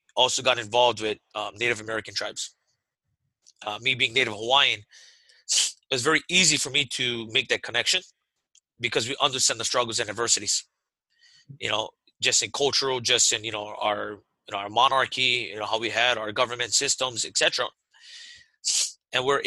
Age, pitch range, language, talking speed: 30-49, 110-130 Hz, English, 165 wpm